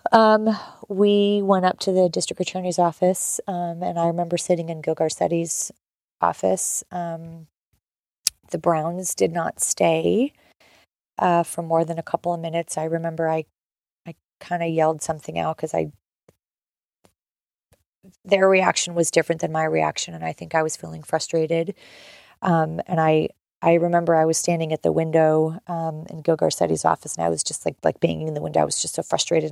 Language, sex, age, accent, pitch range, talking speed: English, female, 30-49, American, 150-170 Hz, 180 wpm